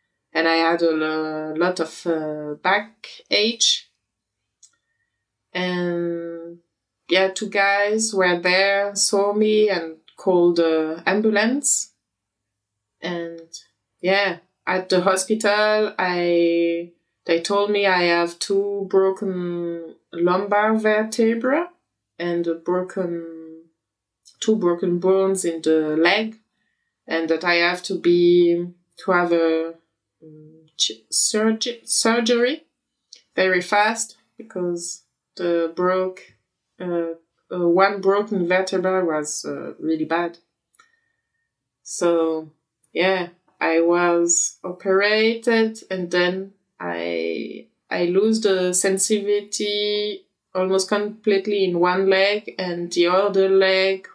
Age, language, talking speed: 20-39, English, 100 wpm